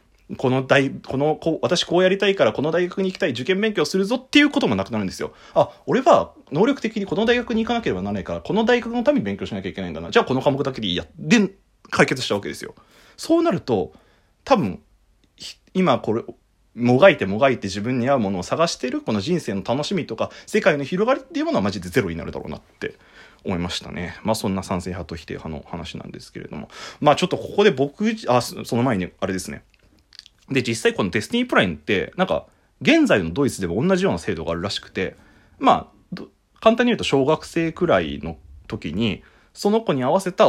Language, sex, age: Japanese, male, 30-49